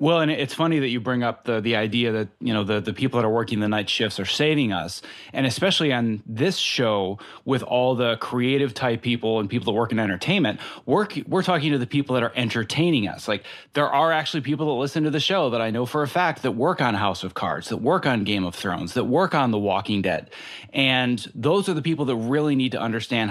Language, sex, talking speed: English, male, 250 wpm